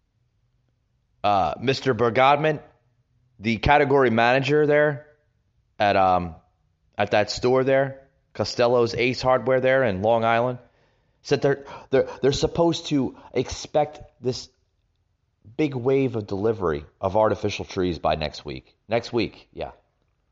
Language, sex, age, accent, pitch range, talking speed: English, male, 30-49, American, 80-130 Hz, 120 wpm